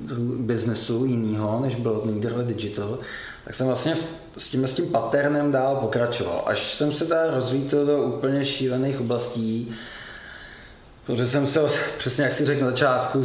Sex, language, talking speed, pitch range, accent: male, Czech, 155 wpm, 110-130 Hz, native